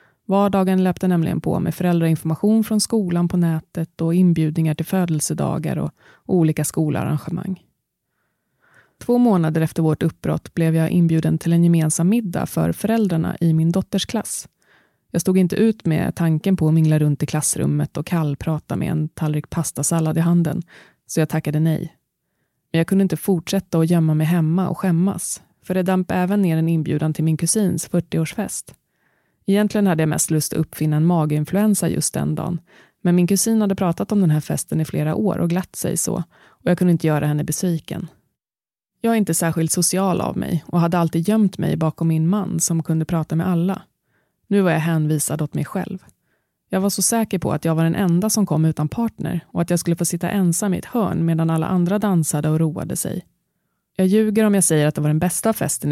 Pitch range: 160-190 Hz